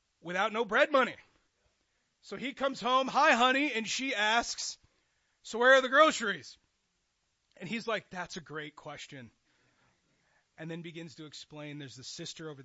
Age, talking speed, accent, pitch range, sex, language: 30-49, 160 wpm, American, 135-215 Hz, male, English